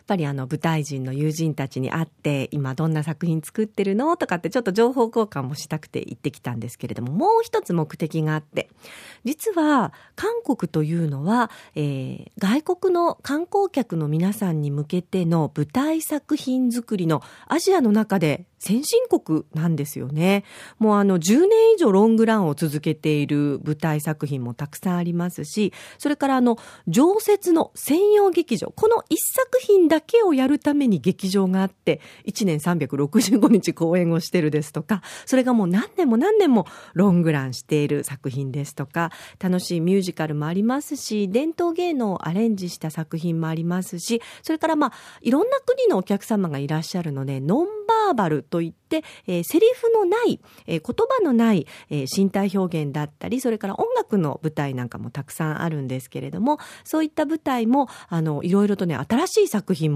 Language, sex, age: Japanese, female, 40-59